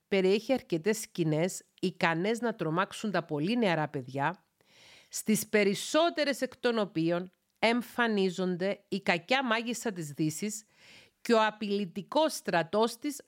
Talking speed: 115 wpm